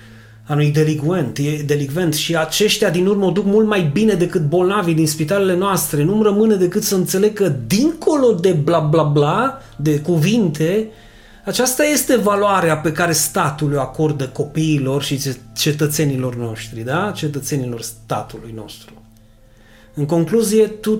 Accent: native